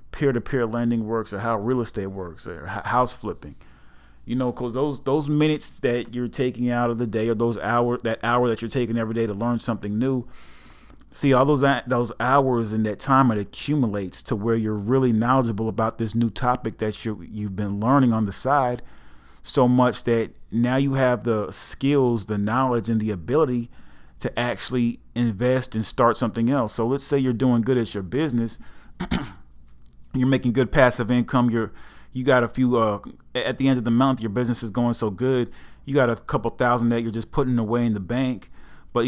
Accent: American